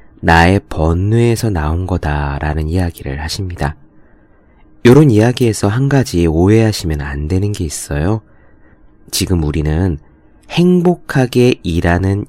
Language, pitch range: Korean, 80-110 Hz